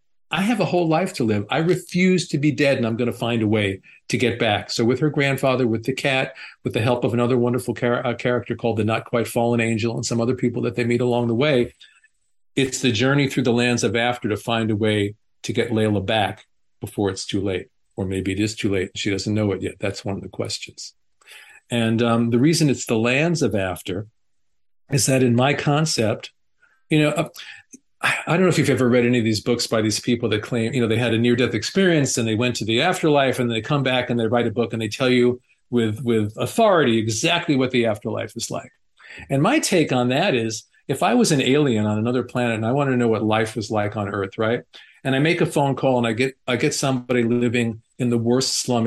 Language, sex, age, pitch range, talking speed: English, male, 50-69, 110-135 Hz, 240 wpm